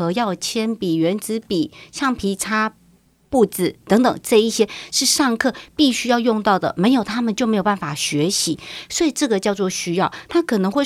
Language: Chinese